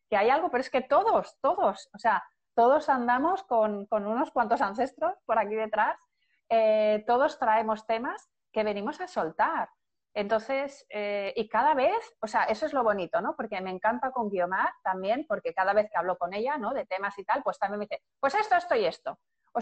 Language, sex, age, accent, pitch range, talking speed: Spanish, female, 30-49, Spanish, 215-280 Hz, 210 wpm